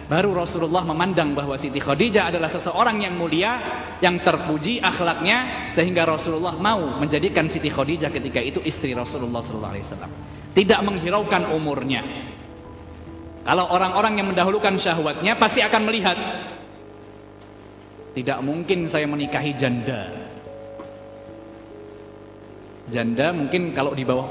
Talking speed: 110 wpm